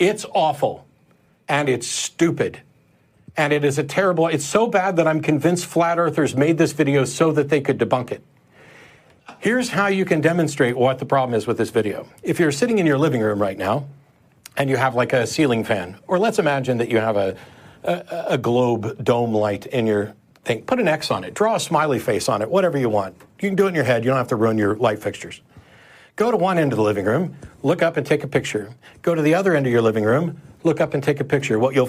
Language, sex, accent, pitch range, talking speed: English, male, American, 120-165 Hz, 245 wpm